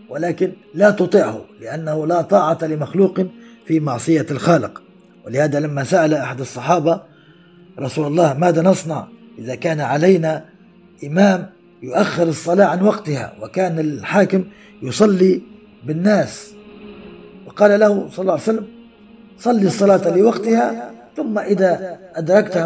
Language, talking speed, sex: Arabic, 115 wpm, male